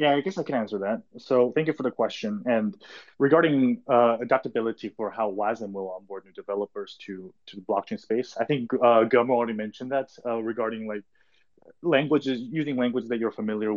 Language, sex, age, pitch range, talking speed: English, male, 20-39, 105-125 Hz, 195 wpm